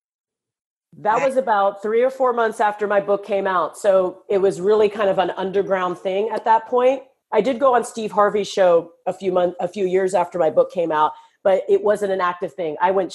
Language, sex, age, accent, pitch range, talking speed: English, female, 40-59, American, 185-240 Hz, 230 wpm